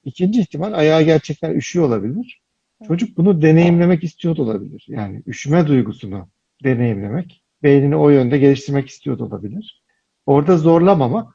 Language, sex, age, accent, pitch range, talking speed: Turkish, male, 60-79, native, 125-160 Hz, 120 wpm